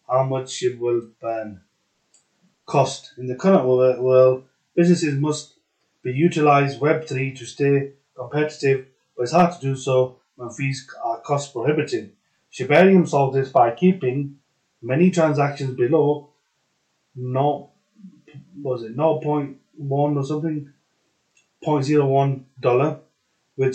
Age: 30-49